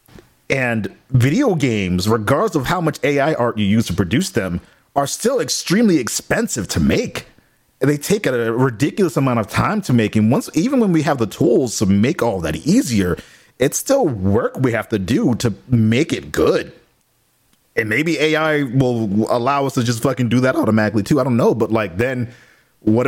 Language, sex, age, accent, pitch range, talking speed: English, male, 30-49, American, 105-140 Hz, 190 wpm